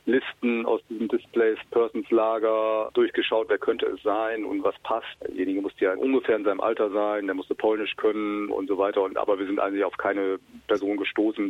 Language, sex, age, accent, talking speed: German, male, 40-59, German, 200 wpm